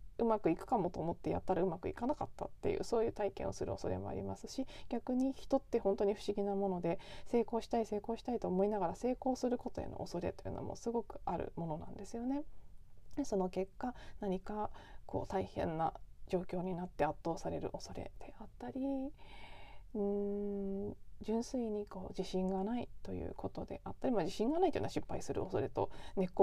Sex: female